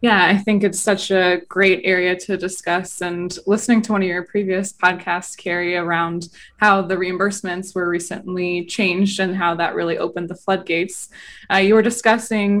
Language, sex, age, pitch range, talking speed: English, female, 20-39, 175-200 Hz, 175 wpm